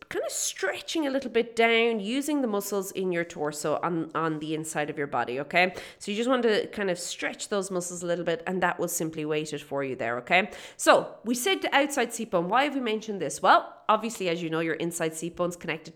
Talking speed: 245 wpm